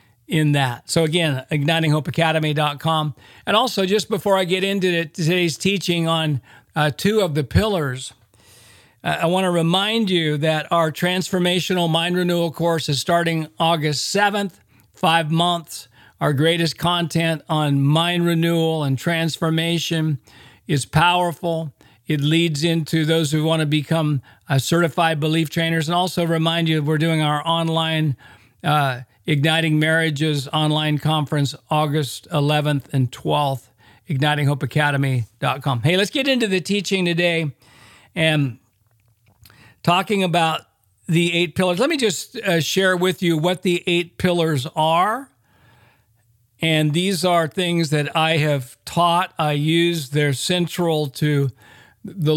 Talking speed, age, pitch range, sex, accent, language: 135 wpm, 40-59, 145-170 Hz, male, American, English